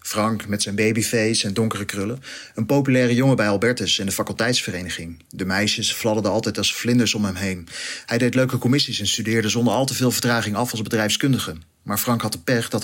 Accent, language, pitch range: Dutch, Dutch, 105-120 Hz